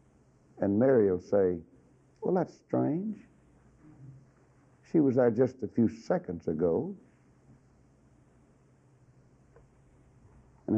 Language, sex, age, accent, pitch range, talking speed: English, male, 60-79, American, 110-170 Hz, 90 wpm